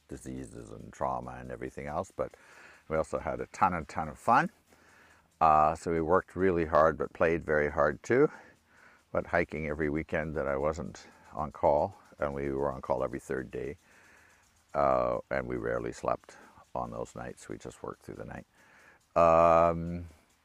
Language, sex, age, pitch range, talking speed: English, male, 60-79, 70-90 Hz, 175 wpm